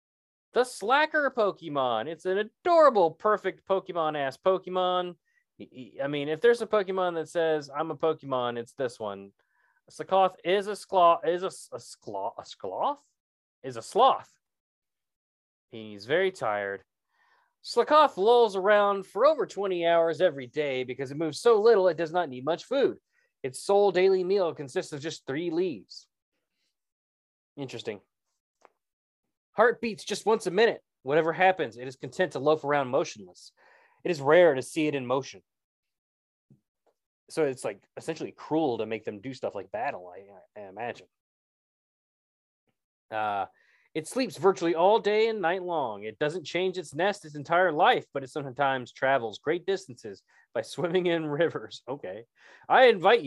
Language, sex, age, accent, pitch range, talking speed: English, male, 20-39, American, 135-195 Hz, 155 wpm